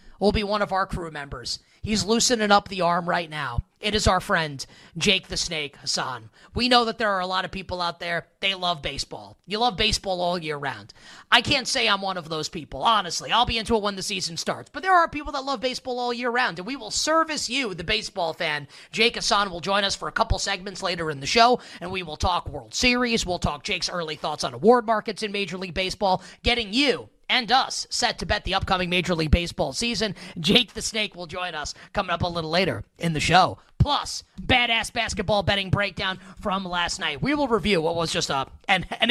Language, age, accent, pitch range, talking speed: English, 30-49, American, 175-230 Hz, 235 wpm